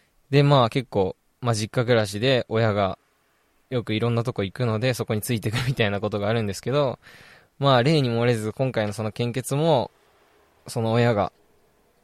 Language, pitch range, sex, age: Japanese, 110-150 Hz, male, 20-39